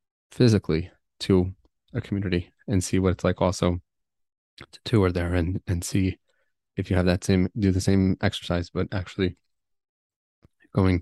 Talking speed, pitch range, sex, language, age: 150 wpm, 90-100 Hz, male, English, 20-39